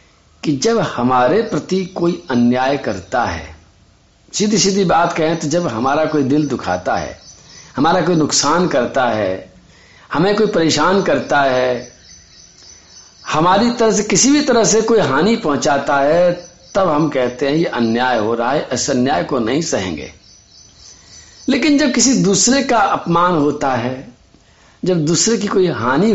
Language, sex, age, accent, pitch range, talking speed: Hindi, male, 50-69, native, 120-200 Hz, 155 wpm